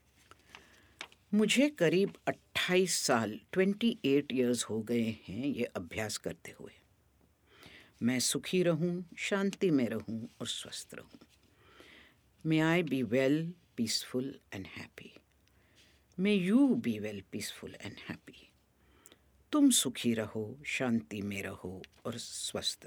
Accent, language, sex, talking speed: native, Hindi, female, 120 wpm